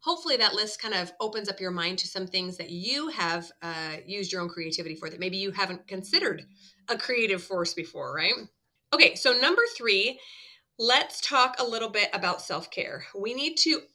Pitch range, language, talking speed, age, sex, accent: 185-250 Hz, English, 195 wpm, 30-49, female, American